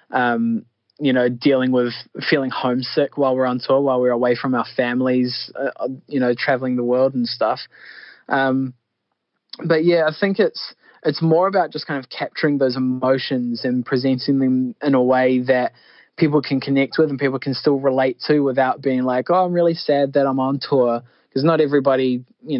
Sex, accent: male, Australian